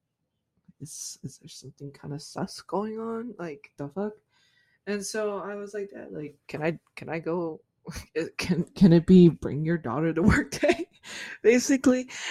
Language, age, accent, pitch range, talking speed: English, 20-39, American, 140-175 Hz, 170 wpm